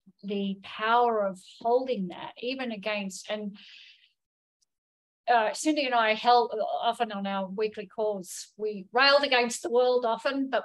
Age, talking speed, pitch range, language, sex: 50-69, 140 wpm, 190-240 Hz, English, female